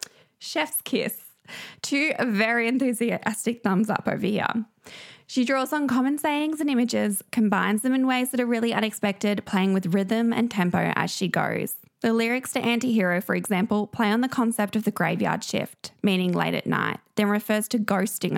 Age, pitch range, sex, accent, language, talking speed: 20-39, 205-245 Hz, female, Australian, English, 175 wpm